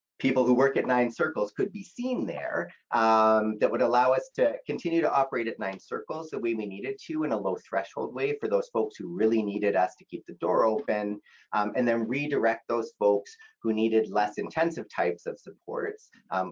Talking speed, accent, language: 210 wpm, American, English